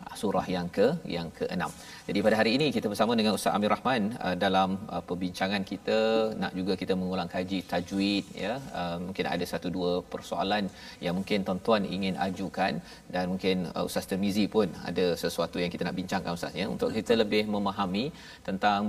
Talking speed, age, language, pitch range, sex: 170 wpm, 40-59, Malayalam, 95-115 Hz, male